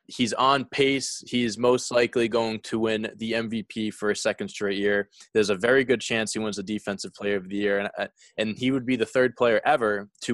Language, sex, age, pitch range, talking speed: English, male, 20-39, 100-115 Hz, 225 wpm